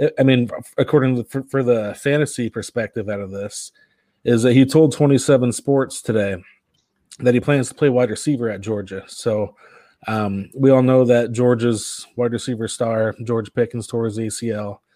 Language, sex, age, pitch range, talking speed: English, male, 20-39, 110-125 Hz, 170 wpm